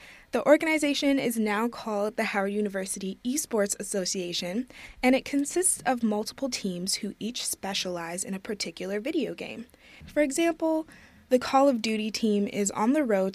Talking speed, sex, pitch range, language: 155 wpm, female, 200-260 Hz, English